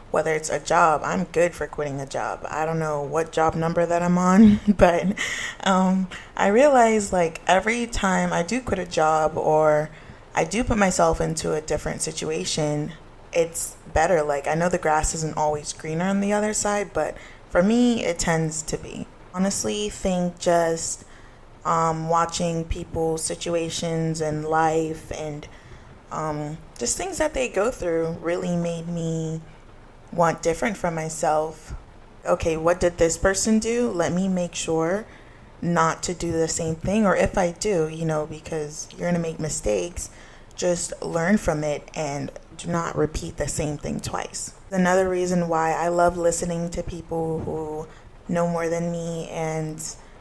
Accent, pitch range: American, 155-180 Hz